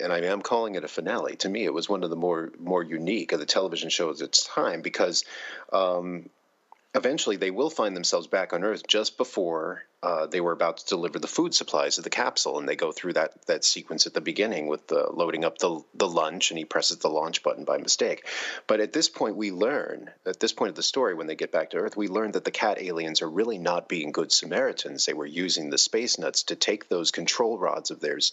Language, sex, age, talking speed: English, male, 30-49, 245 wpm